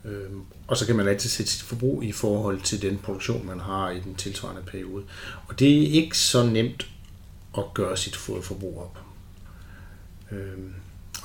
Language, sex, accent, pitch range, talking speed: Danish, male, native, 95-115 Hz, 170 wpm